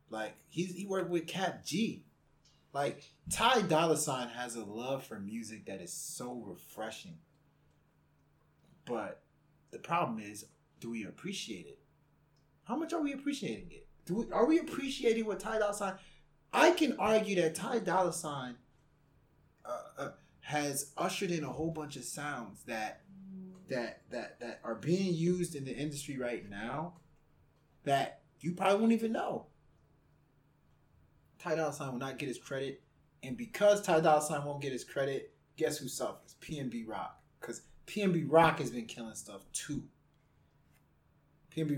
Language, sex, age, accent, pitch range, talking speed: English, male, 20-39, American, 125-175 Hz, 155 wpm